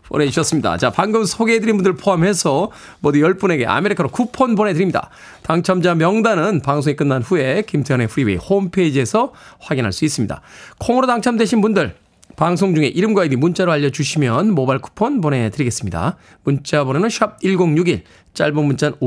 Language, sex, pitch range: Korean, male, 125-205 Hz